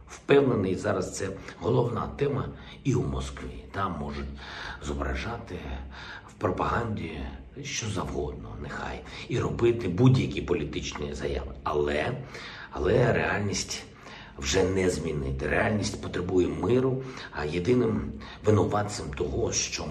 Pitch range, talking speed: 70-115 Hz, 105 wpm